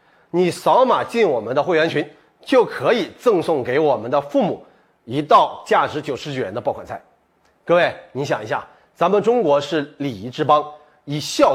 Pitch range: 150-240 Hz